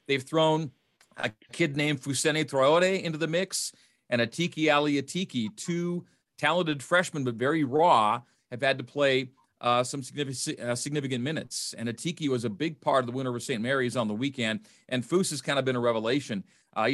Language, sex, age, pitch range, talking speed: English, male, 40-59, 125-155 Hz, 190 wpm